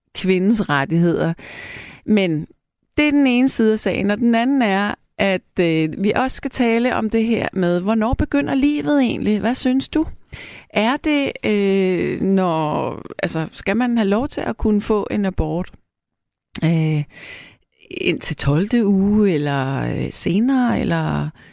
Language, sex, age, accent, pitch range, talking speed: Danish, female, 30-49, native, 170-240 Hz, 140 wpm